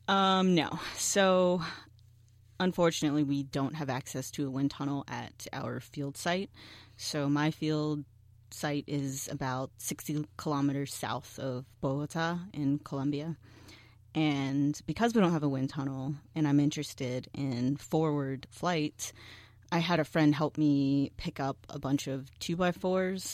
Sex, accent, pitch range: female, American, 125-155 Hz